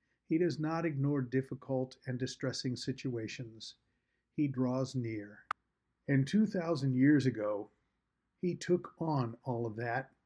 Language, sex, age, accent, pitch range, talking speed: English, male, 50-69, American, 120-145 Hz, 125 wpm